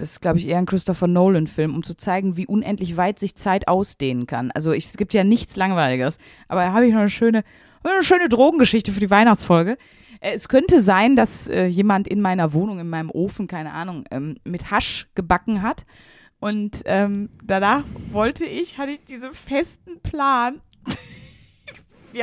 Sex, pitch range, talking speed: female, 190-255 Hz, 175 wpm